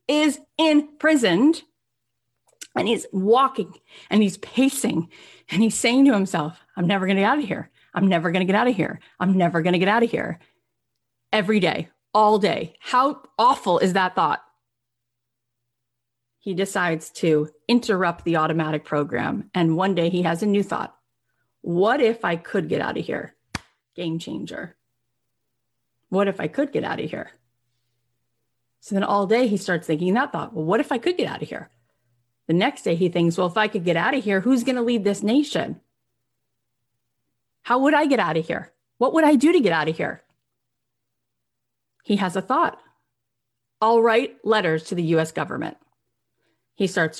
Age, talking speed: 30-49, 185 wpm